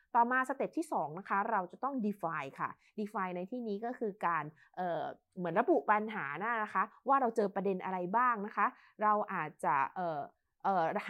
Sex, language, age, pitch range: female, Thai, 20-39, 195-255 Hz